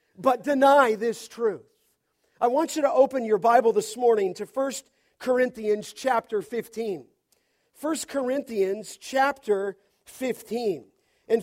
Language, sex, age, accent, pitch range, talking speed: English, male, 50-69, American, 225-285 Hz, 120 wpm